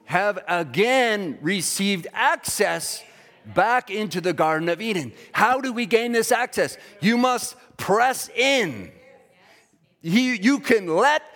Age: 50-69